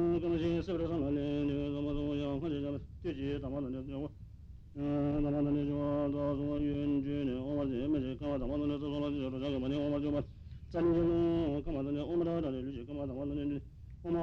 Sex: male